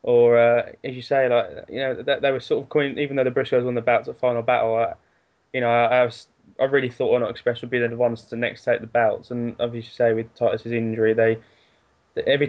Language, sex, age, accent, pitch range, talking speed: English, male, 10-29, British, 115-130 Hz, 245 wpm